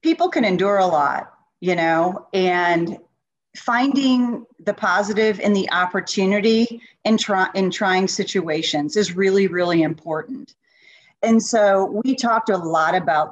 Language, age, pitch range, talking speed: English, 40-59, 165-210 Hz, 135 wpm